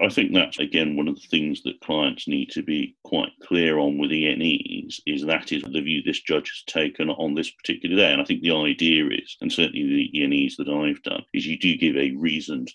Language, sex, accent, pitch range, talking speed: English, male, British, 265-285 Hz, 240 wpm